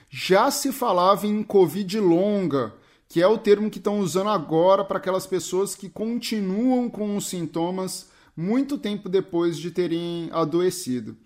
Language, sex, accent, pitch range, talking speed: Portuguese, male, Brazilian, 165-210 Hz, 150 wpm